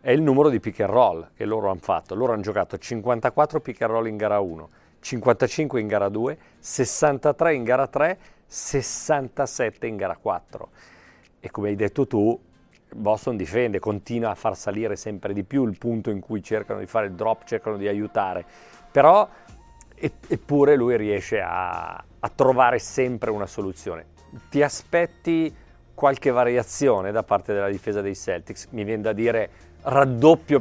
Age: 40-59